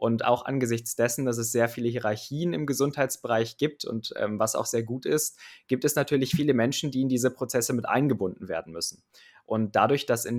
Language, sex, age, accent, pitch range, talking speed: German, male, 20-39, German, 115-130 Hz, 210 wpm